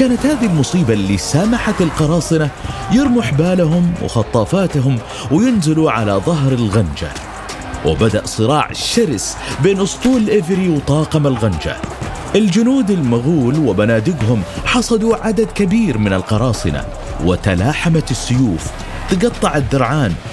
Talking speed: 95 wpm